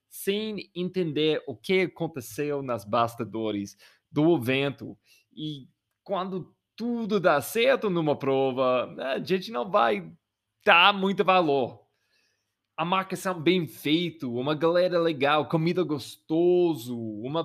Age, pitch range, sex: 20-39, 130-175 Hz, male